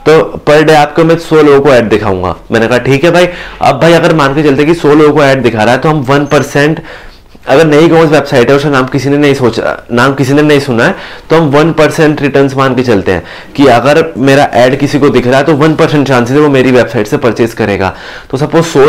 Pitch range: 125-160 Hz